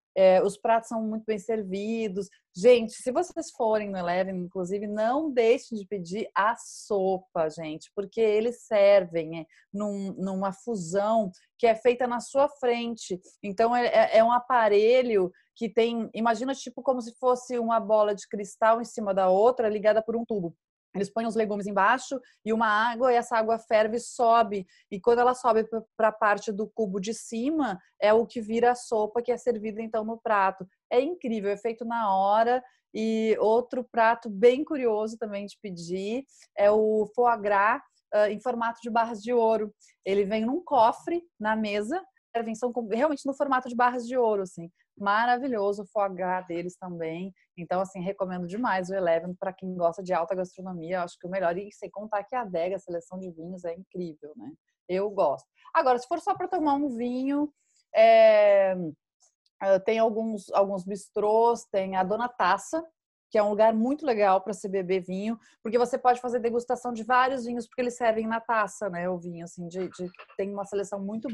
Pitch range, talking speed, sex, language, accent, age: 195-245 Hz, 185 wpm, female, Portuguese, Brazilian, 30-49